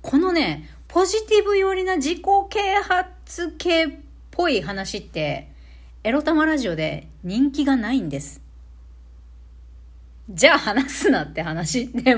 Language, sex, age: Japanese, female, 40-59